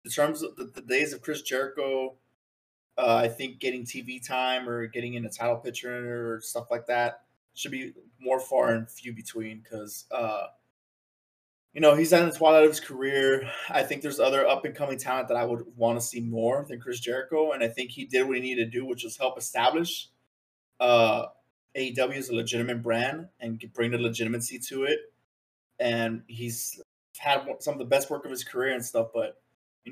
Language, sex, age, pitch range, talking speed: English, male, 20-39, 115-130 Hz, 195 wpm